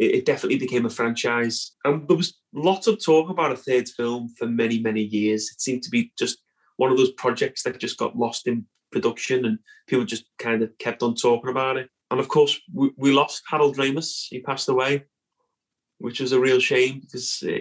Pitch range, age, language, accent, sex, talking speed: 120-155 Hz, 30-49, English, British, male, 205 wpm